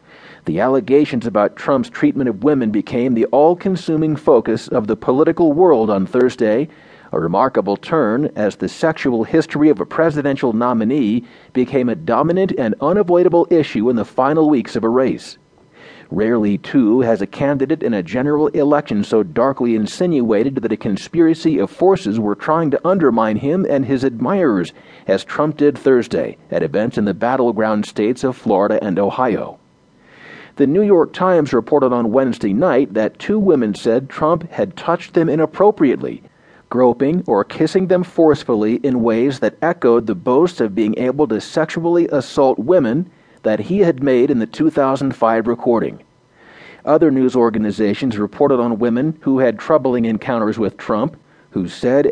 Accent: American